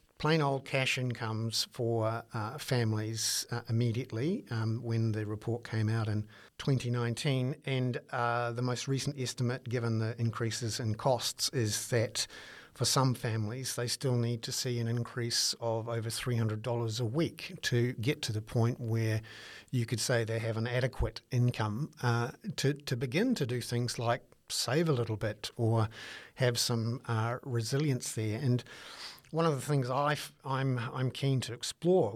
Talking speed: 165 wpm